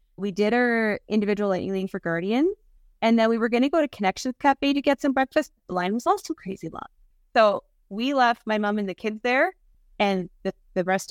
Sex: female